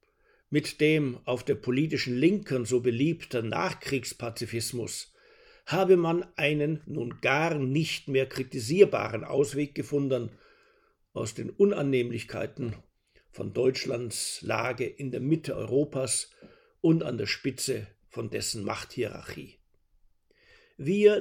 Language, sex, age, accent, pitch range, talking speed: German, male, 60-79, German, 125-180 Hz, 105 wpm